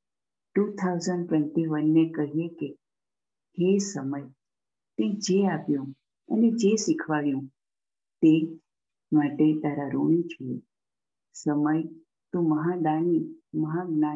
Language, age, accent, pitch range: English, 50-69, Indian, 150-175 Hz